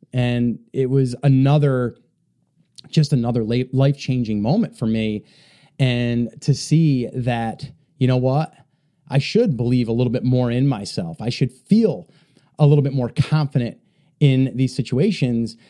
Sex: male